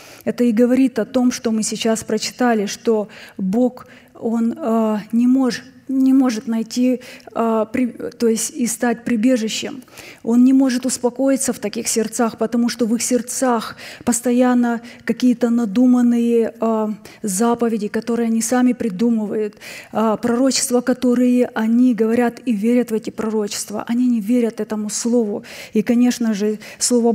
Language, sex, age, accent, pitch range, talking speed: Russian, female, 20-39, native, 215-245 Hz, 125 wpm